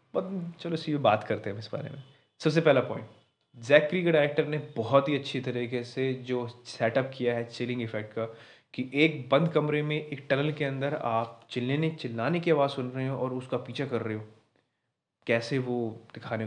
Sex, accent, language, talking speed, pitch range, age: male, native, Hindi, 200 wpm, 120-155 Hz, 20-39